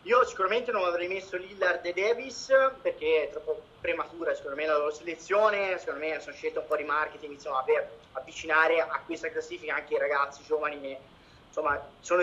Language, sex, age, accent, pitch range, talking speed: Italian, male, 30-49, native, 160-240 Hz, 180 wpm